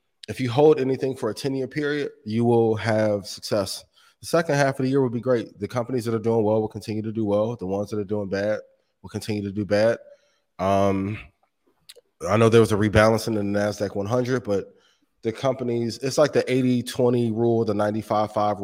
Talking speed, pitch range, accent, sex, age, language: 205 wpm, 100-120 Hz, American, male, 20-39, English